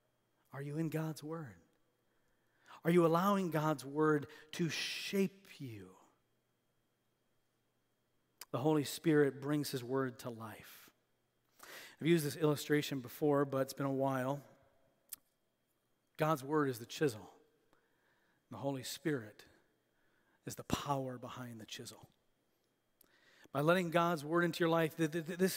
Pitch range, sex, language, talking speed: 150-200 Hz, male, English, 125 wpm